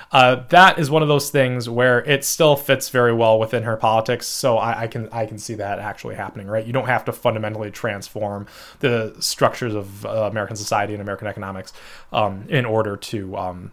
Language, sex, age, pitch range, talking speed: English, male, 20-39, 110-135 Hz, 205 wpm